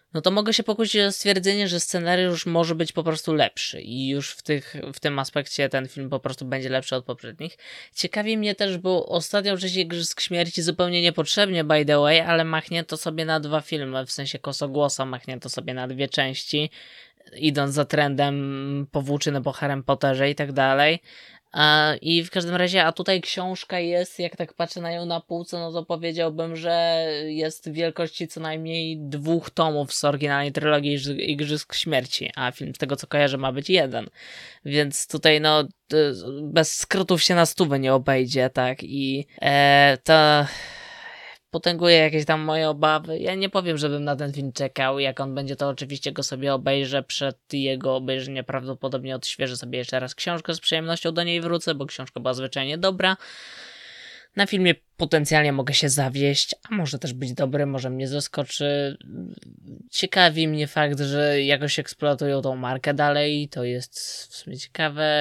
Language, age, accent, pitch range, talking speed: Polish, 20-39, native, 135-165 Hz, 175 wpm